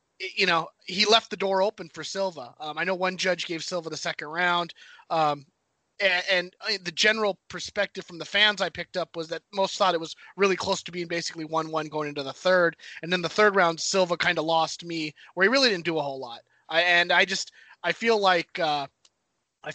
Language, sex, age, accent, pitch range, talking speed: English, male, 30-49, American, 160-195 Hz, 230 wpm